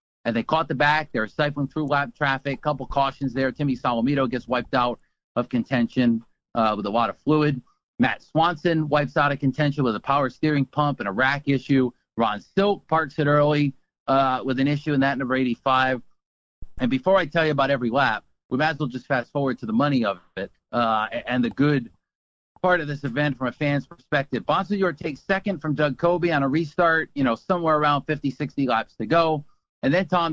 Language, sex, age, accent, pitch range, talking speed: English, male, 40-59, American, 130-155 Hz, 215 wpm